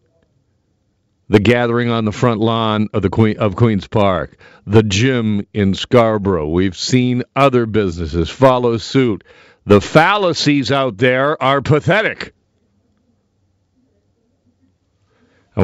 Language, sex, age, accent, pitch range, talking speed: English, male, 50-69, American, 95-120 Hz, 105 wpm